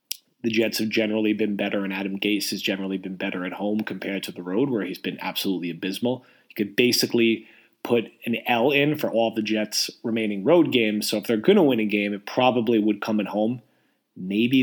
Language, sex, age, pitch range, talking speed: English, male, 30-49, 105-125 Hz, 220 wpm